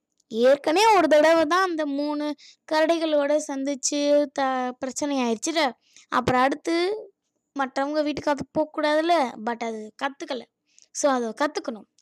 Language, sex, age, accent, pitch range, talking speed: Tamil, female, 20-39, native, 255-330 Hz, 100 wpm